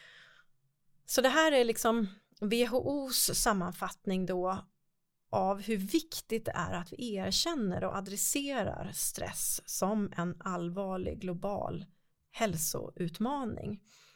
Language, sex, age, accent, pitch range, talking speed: Swedish, female, 30-49, native, 190-225 Hz, 95 wpm